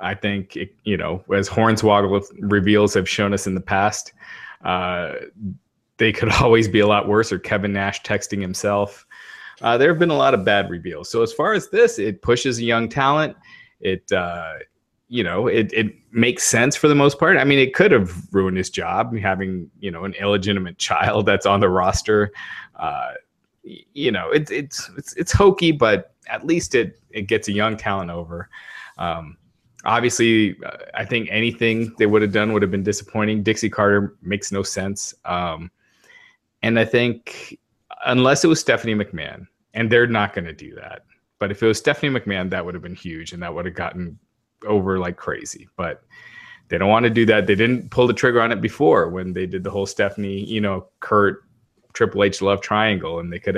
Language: English